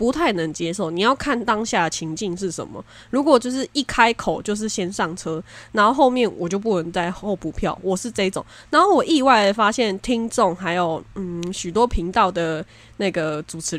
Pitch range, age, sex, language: 170-240 Hz, 20-39, female, Chinese